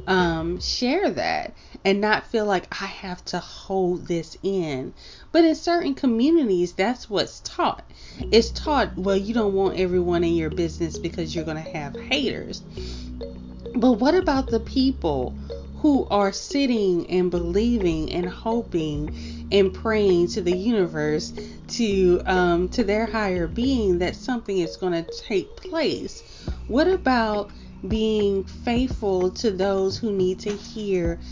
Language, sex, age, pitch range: English, female, 30-49, 170-230 Hz